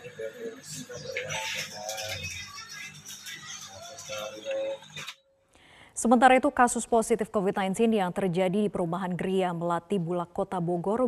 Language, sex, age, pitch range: Indonesian, female, 20-39, 180-220 Hz